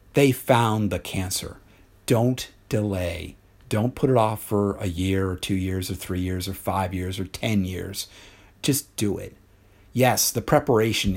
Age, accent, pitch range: 50-69, American, 95-110 Hz